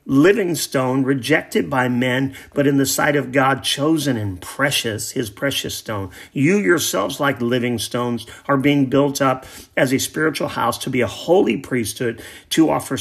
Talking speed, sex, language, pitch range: 170 wpm, male, English, 120-150 Hz